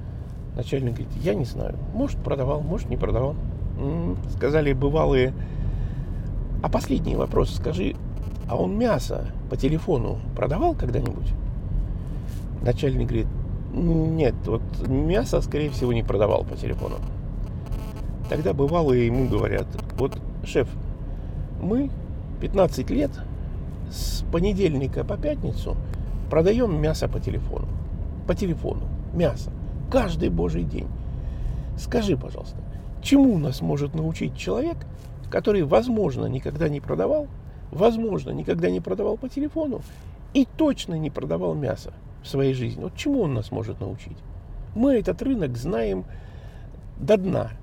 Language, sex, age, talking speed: Russian, male, 50-69, 120 wpm